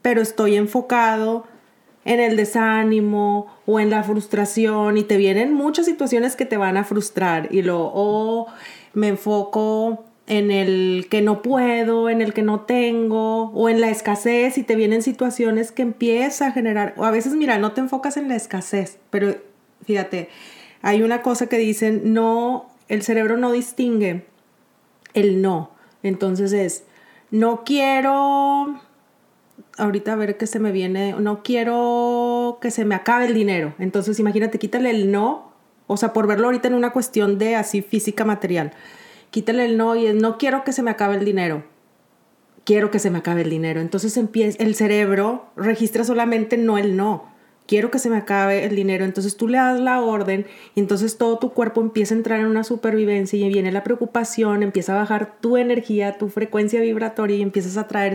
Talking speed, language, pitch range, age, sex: 180 wpm, Spanish, 205-235 Hz, 30-49, female